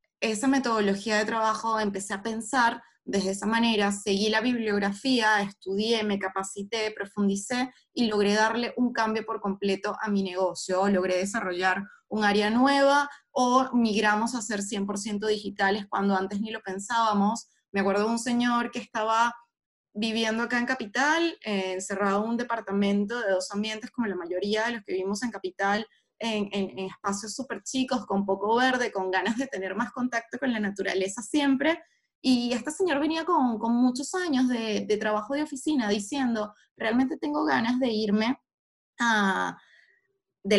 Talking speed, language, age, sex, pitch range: 165 wpm, Spanish, 20-39, female, 200-245 Hz